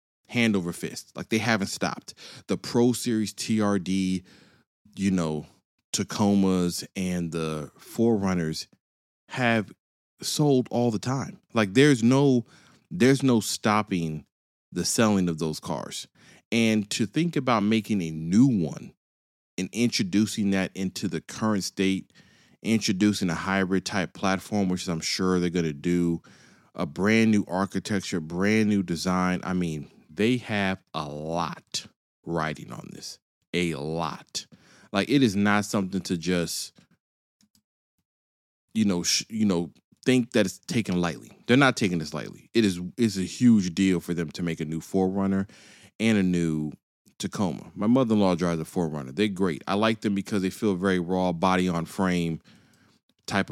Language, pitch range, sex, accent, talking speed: English, 85-110 Hz, male, American, 150 wpm